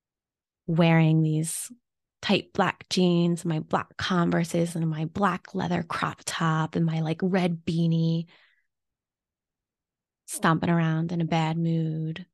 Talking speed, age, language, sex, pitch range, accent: 120 wpm, 20-39, English, female, 165-185 Hz, American